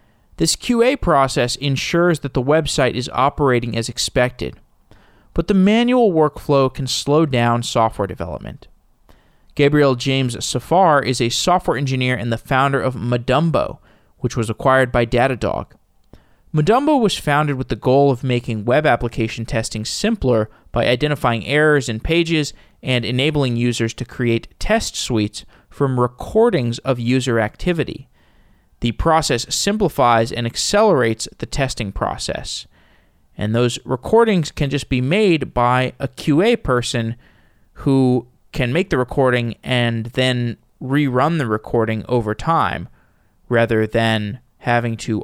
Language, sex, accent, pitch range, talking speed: English, male, American, 115-150 Hz, 135 wpm